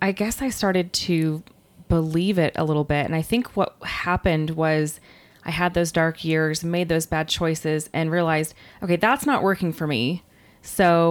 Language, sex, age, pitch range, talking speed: English, female, 20-39, 160-185 Hz, 185 wpm